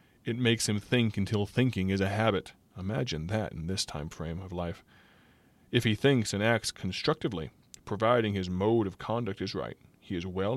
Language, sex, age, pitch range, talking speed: English, male, 20-39, 95-110 Hz, 185 wpm